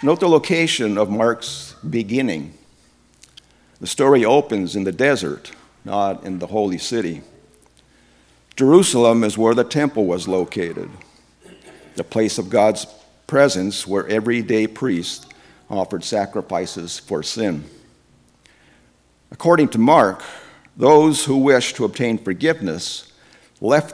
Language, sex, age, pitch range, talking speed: English, male, 50-69, 80-120 Hz, 115 wpm